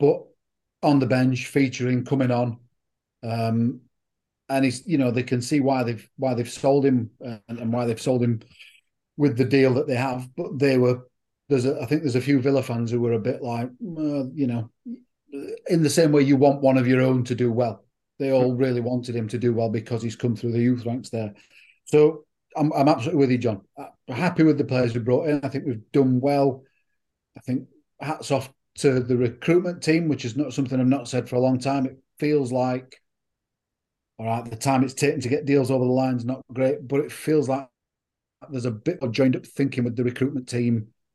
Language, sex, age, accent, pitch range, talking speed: English, male, 40-59, British, 120-140 Hz, 225 wpm